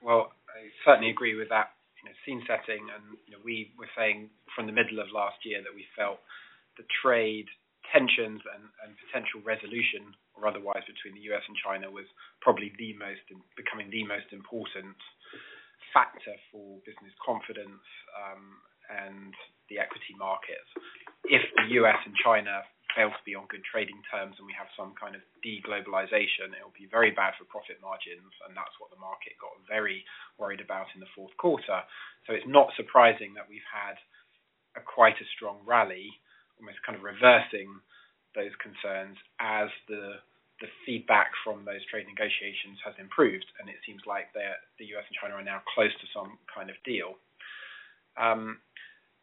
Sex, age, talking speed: male, 20-39, 170 wpm